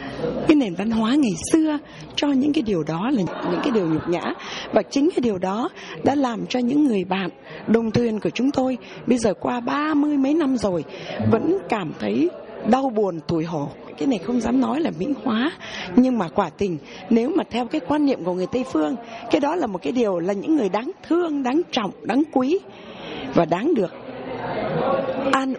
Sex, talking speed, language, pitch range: female, 210 wpm, Vietnamese, 195-275 Hz